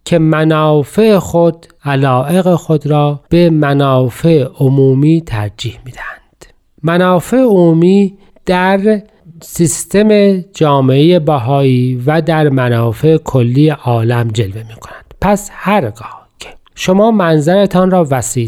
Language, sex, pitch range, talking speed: Persian, male, 125-170 Hz, 105 wpm